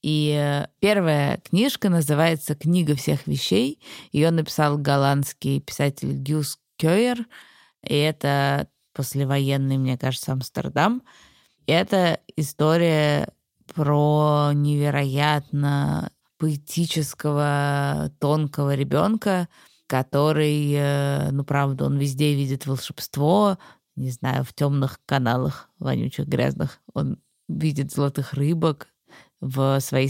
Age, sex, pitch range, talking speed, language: 20-39, female, 135-160 Hz, 95 wpm, Russian